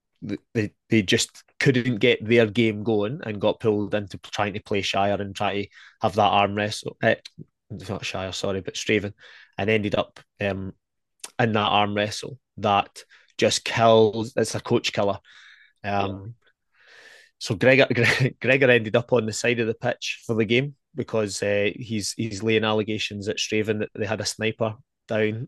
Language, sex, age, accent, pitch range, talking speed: English, male, 20-39, British, 105-120 Hz, 170 wpm